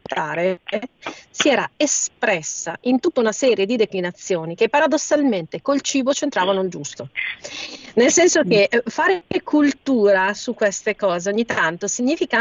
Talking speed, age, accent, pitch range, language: 130 wpm, 40-59, native, 200-265 Hz, Italian